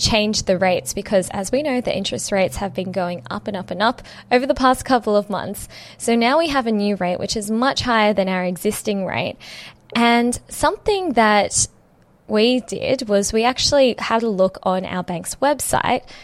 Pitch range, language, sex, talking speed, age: 200-270 Hz, English, female, 200 wpm, 10-29